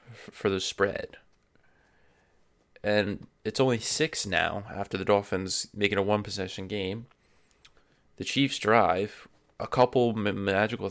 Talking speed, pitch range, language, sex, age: 115 wpm, 95-120 Hz, English, male, 20-39